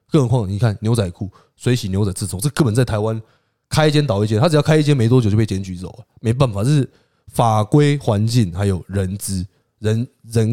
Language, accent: Chinese, native